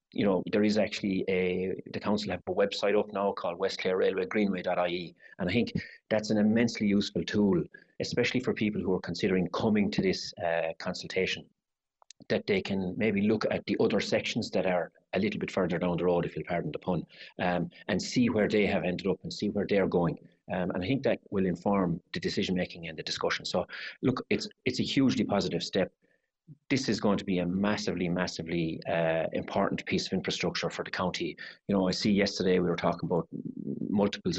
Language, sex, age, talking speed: English, male, 30-49, 210 wpm